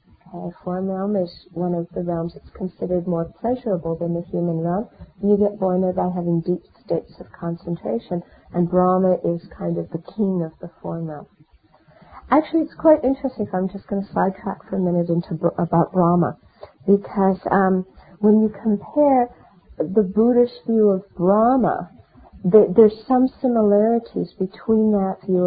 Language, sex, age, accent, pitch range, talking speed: English, female, 50-69, American, 170-205 Hz, 165 wpm